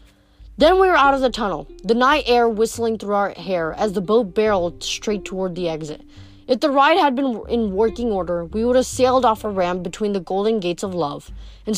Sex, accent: female, American